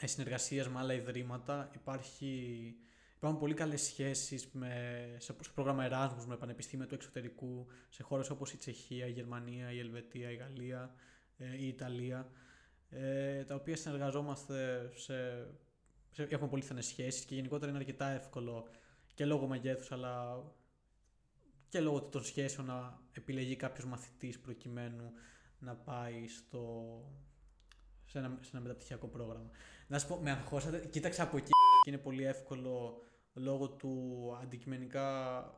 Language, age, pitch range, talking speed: Greek, 20-39, 120-140 Hz, 140 wpm